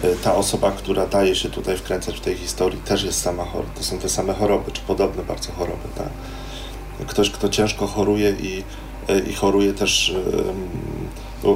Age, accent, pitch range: 30-49, native, 95-110 Hz